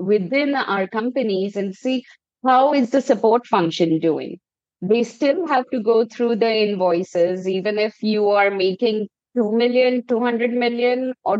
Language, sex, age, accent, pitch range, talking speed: English, female, 20-39, Indian, 195-250 Hz, 155 wpm